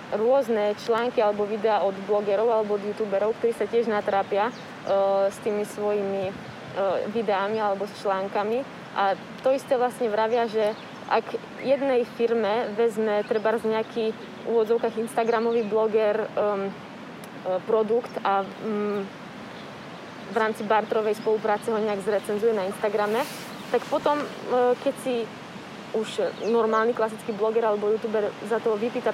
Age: 20-39